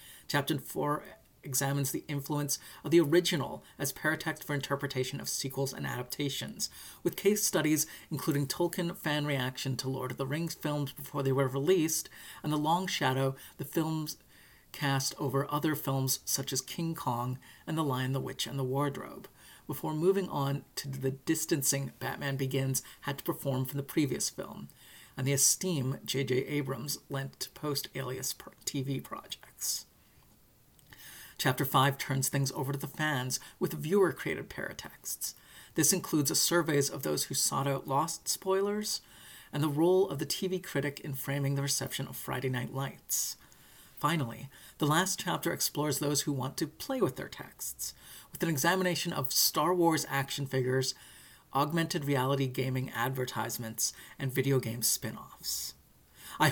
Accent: American